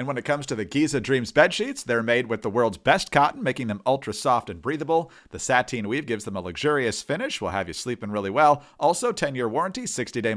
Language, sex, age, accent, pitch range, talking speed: English, male, 40-59, American, 115-160 Hz, 235 wpm